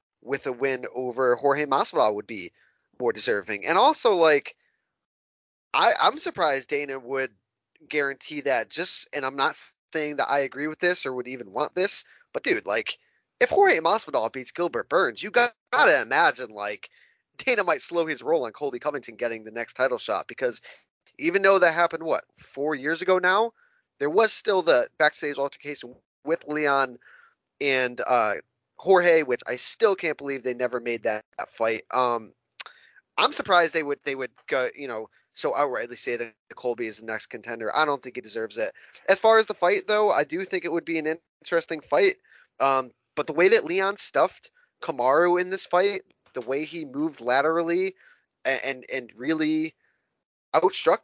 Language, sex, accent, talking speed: English, male, American, 185 wpm